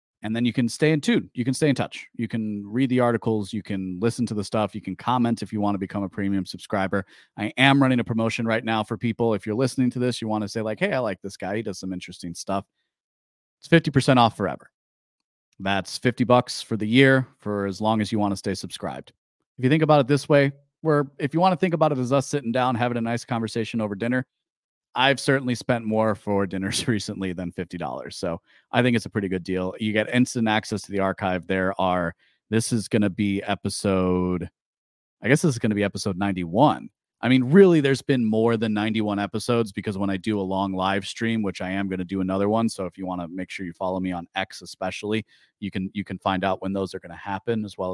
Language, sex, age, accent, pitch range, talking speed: English, male, 30-49, American, 95-120 Hz, 250 wpm